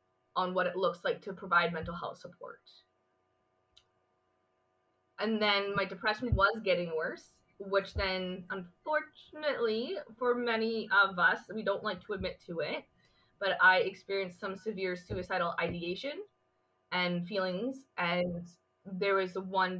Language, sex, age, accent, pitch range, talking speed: English, female, 20-39, American, 175-230 Hz, 135 wpm